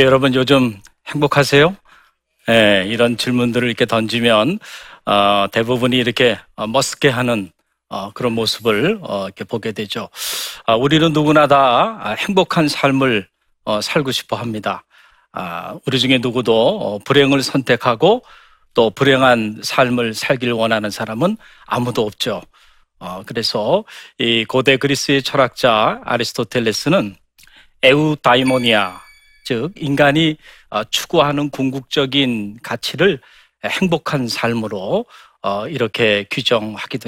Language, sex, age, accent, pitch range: Korean, male, 40-59, native, 115-145 Hz